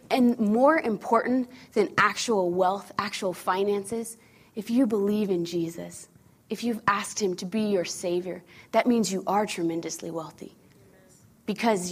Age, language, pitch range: 20-39, English, 195-255 Hz